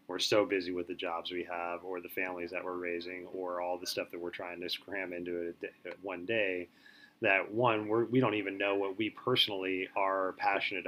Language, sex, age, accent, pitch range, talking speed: English, male, 30-49, American, 90-105 Hz, 215 wpm